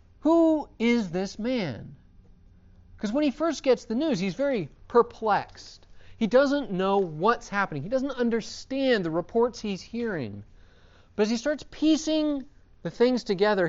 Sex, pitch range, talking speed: male, 170-250 Hz, 150 wpm